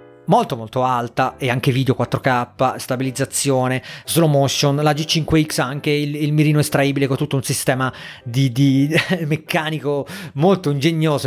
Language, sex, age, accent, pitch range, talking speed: Italian, male, 30-49, native, 130-150 Hz, 145 wpm